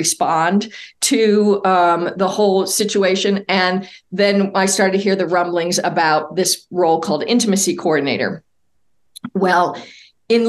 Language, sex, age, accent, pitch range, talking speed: English, female, 50-69, American, 180-210 Hz, 125 wpm